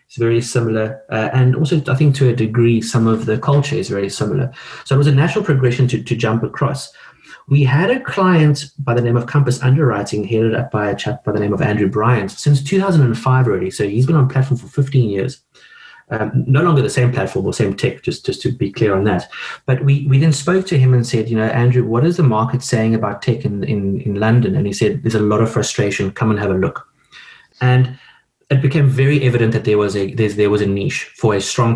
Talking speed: 240 wpm